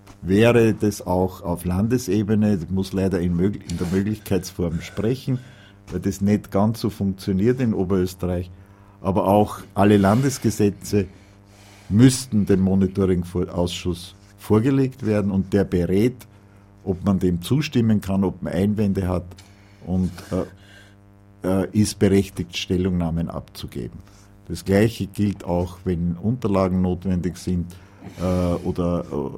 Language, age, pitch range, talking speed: German, 50-69, 90-100 Hz, 120 wpm